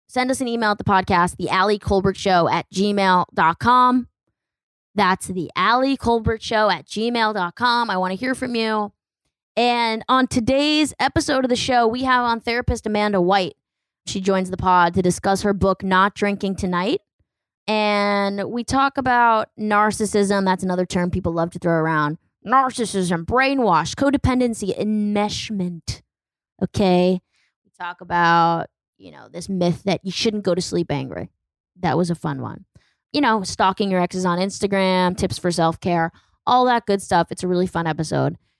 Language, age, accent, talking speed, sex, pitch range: English, 20-39, American, 160 wpm, female, 180-235 Hz